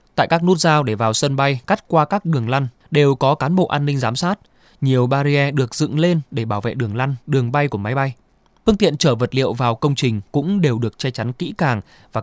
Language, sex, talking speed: Vietnamese, male, 255 wpm